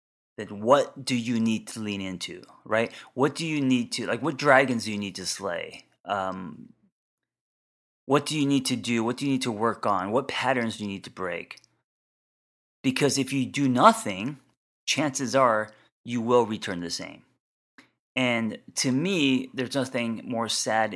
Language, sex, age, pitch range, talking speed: English, male, 30-49, 100-125 Hz, 175 wpm